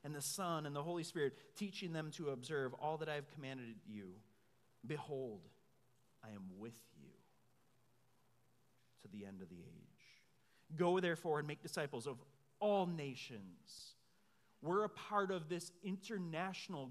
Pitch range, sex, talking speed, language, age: 140-195 Hz, male, 150 wpm, English, 30-49